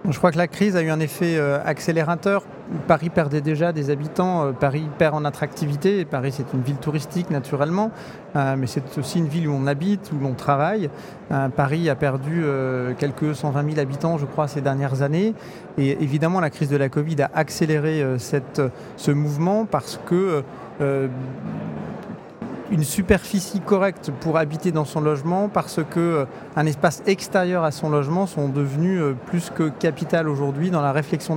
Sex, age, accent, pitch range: male, 40-59, French, 140-170 Hz